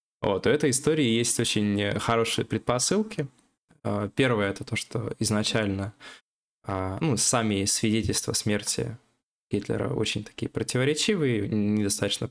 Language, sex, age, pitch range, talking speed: Russian, male, 20-39, 105-125 Hz, 110 wpm